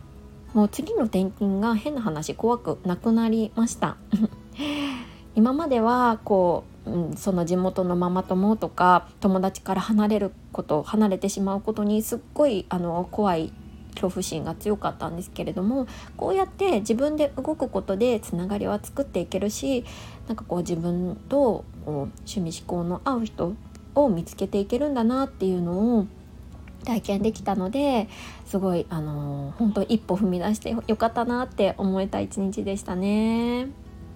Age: 20-39